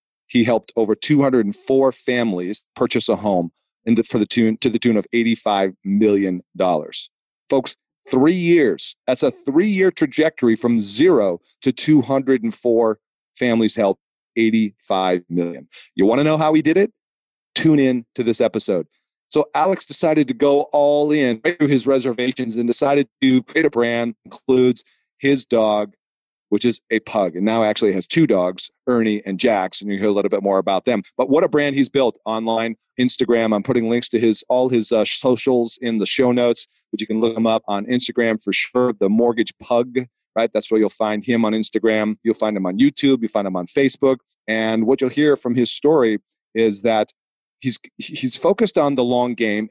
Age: 40-59